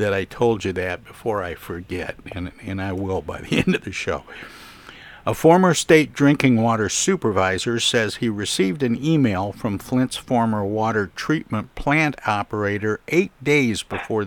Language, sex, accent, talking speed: English, male, American, 165 wpm